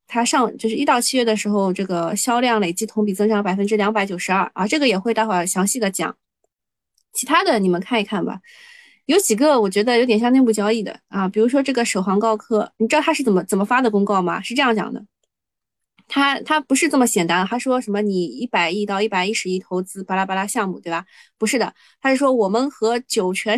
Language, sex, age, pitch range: Chinese, female, 20-39, 195-260 Hz